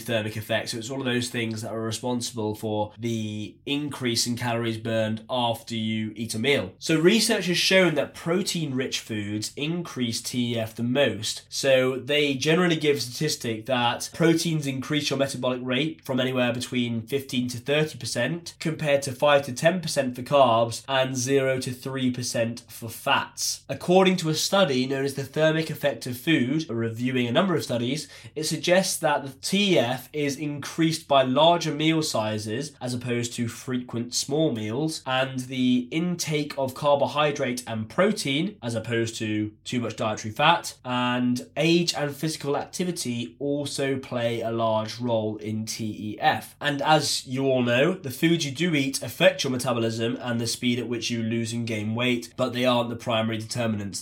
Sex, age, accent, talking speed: male, 20-39, British, 170 wpm